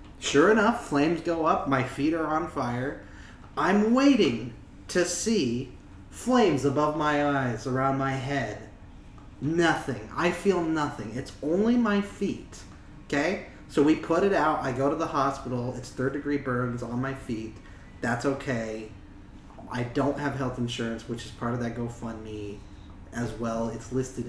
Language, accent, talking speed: English, American, 160 wpm